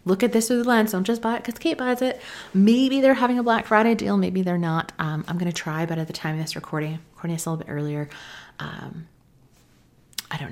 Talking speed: 260 wpm